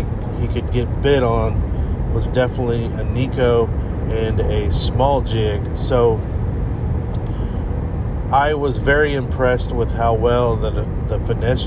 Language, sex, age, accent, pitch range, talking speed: English, male, 40-59, American, 105-125 Hz, 125 wpm